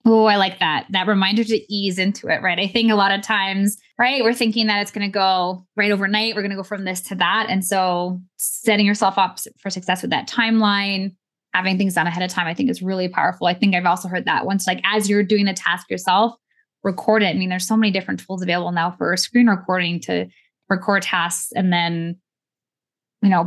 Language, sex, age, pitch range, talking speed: English, female, 20-39, 180-215 Hz, 230 wpm